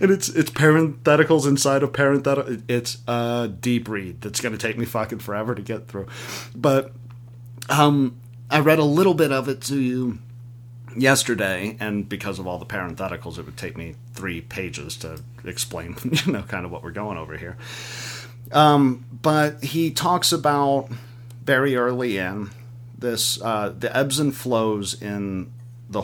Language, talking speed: English, 165 wpm